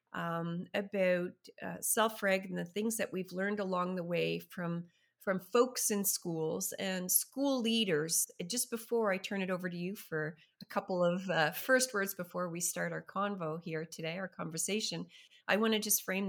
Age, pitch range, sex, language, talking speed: 30-49, 160-200 Hz, female, English, 185 wpm